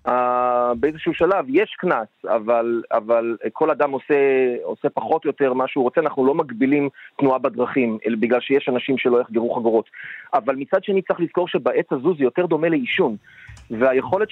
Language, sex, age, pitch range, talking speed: Hebrew, male, 30-49, 135-190 Hz, 170 wpm